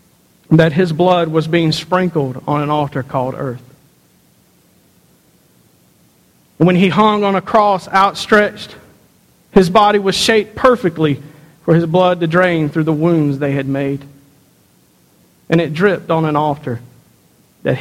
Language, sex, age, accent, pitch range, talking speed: English, male, 50-69, American, 145-190 Hz, 140 wpm